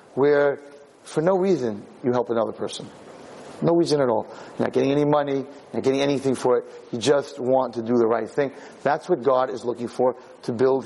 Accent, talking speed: American, 215 wpm